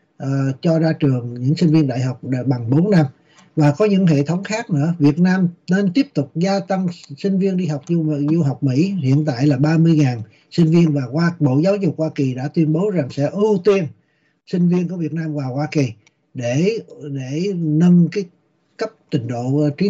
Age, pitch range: 60-79, 145-175 Hz